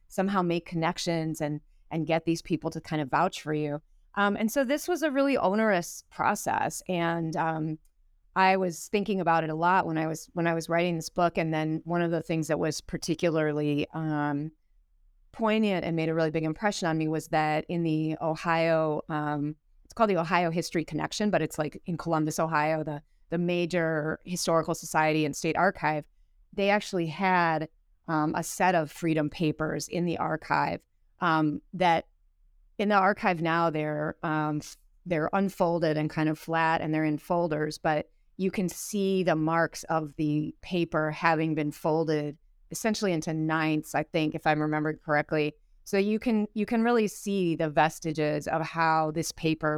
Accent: American